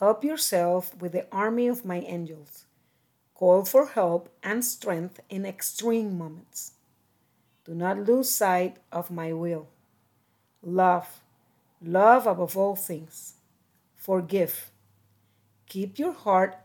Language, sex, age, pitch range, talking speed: English, female, 40-59, 160-205 Hz, 115 wpm